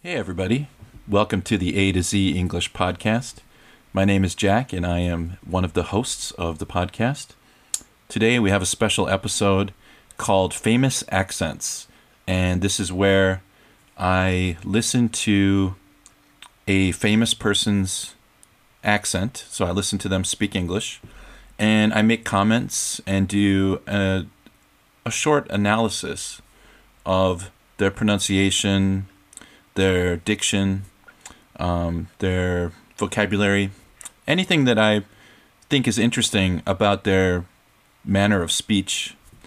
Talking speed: 120 wpm